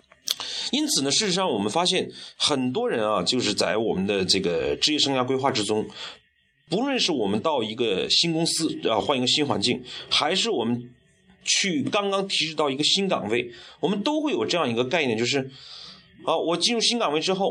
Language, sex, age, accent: Chinese, male, 30-49, native